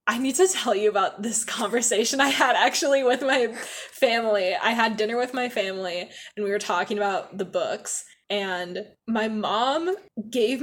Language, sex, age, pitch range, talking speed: English, female, 10-29, 210-290 Hz, 175 wpm